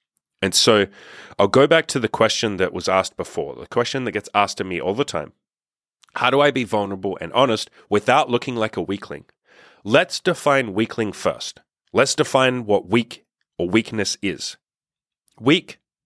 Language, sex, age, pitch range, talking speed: English, male, 30-49, 105-130 Hz, 170 wpm